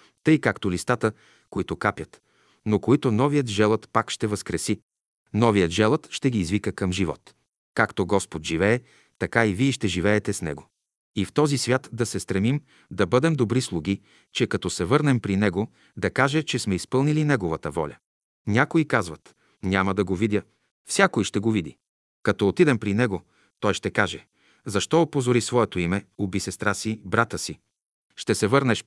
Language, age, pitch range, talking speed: Bulgarian, 40-59, 95-125 Hz, 170 wpm